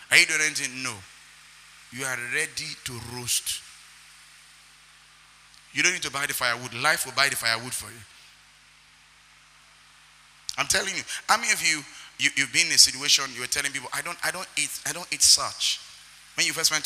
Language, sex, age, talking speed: English, male, 30-49, 190 wpm